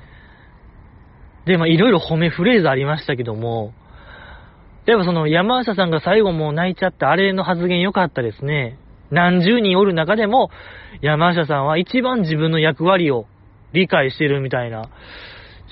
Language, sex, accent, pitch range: Japanese, male, native, 110-180 Hz